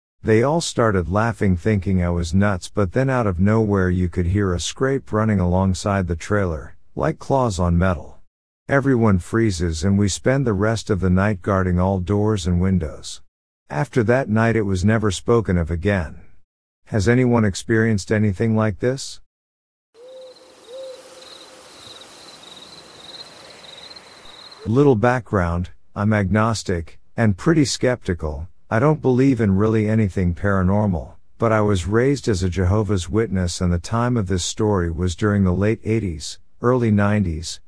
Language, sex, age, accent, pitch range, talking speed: English, male, 50-69, American, 90-115 Hz, 145 wpm